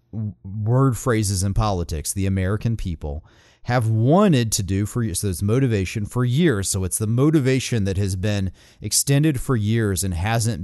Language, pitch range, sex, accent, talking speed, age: English, 100-135 Hz, male, American, 165 wpm, 30-49